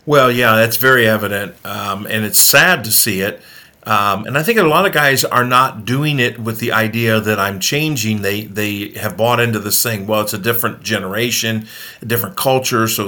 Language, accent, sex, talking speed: English, American, male, 210 wpm